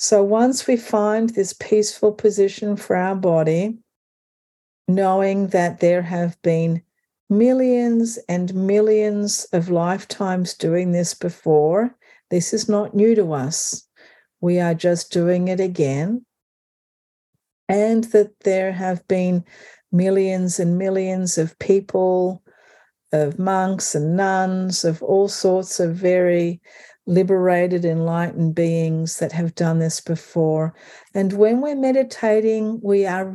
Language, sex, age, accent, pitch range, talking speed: English, female, 50-69, Australian, 175-205 Hz, 120 wpm